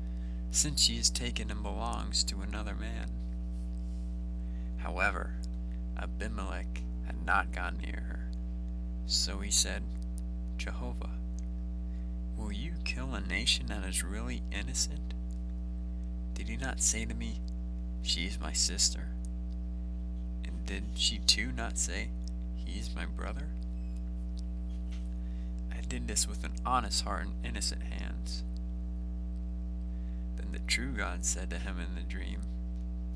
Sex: male